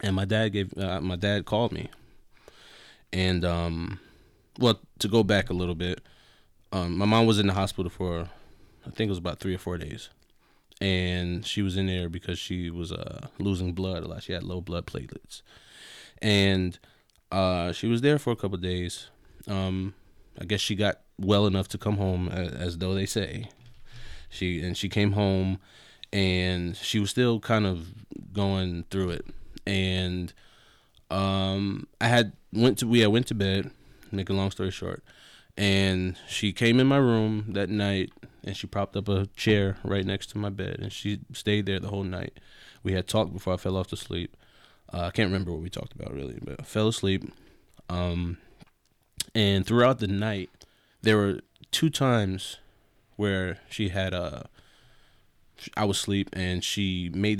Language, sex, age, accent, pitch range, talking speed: English, male, 20-39, American, 90-105 Hz, 185 wpm